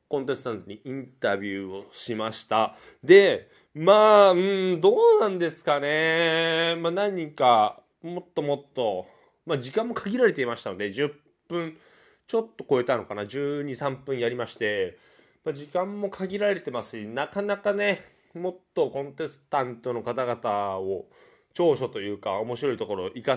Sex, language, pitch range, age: male, Japanese, 115-195 Hz, 20-39